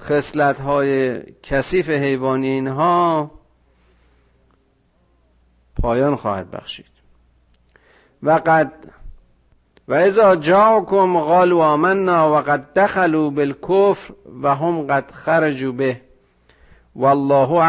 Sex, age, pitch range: male, 50-69, 120-160 Hz